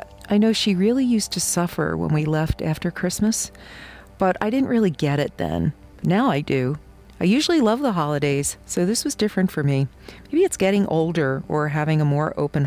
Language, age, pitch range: English, 40-59, 150-215 Hz